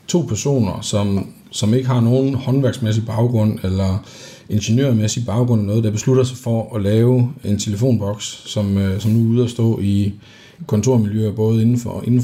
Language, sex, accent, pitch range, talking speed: English, male, Danish, 110-135 Hz, 160 wpm